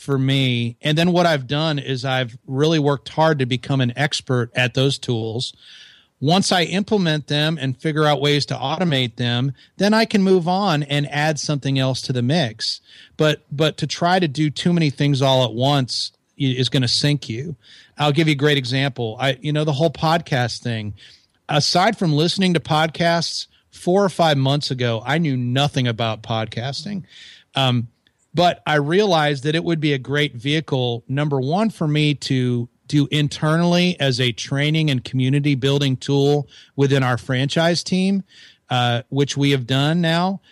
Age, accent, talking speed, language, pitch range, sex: 40-59, American, 180 wpm, English, 130-155 Hz, male